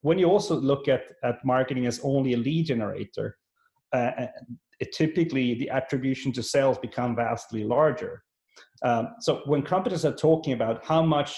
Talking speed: 165 wpm